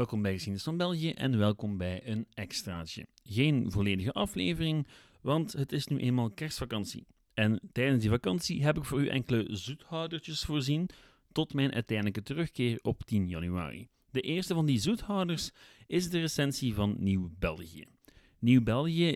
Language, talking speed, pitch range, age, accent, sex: Dutch, 155 wpm, 105-145 Hz, 40-59, Dutch, male